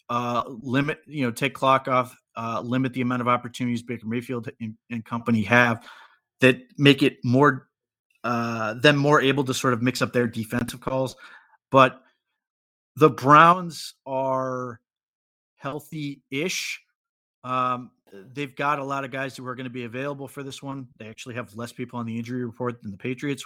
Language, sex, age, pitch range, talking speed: English, male, 30-49, 120-130 Hz, 175 wpm